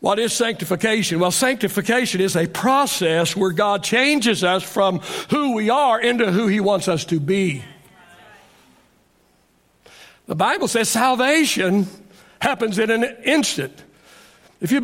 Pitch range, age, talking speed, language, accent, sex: 185-255 Hz, 60-79, 135 wpm, English, American, male